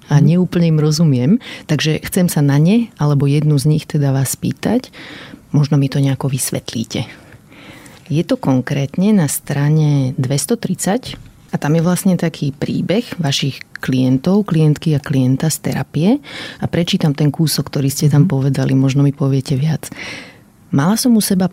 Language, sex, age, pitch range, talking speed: Slovak, female, 30-49, 140-170 Hz, 155 wpm